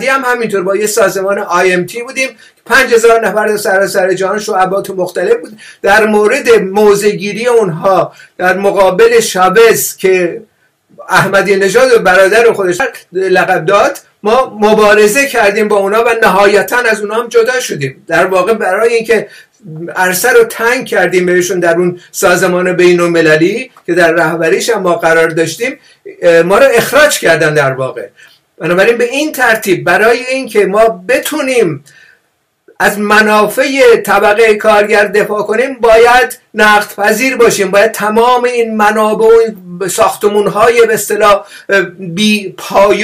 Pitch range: 195-240 Hz